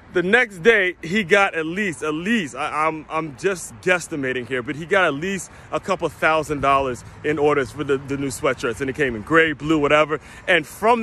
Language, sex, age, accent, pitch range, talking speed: English, male, 30-49, American, 150-200 Hz, 220 wpm